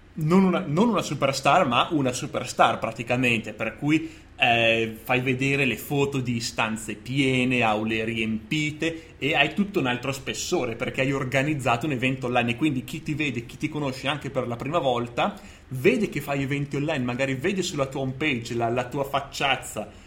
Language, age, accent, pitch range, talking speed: Italian, 30-49, native, 125-160 Hz, 180 wpm